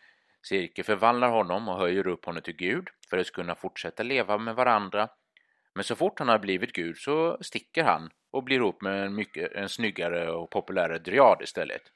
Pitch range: 95-155 Hz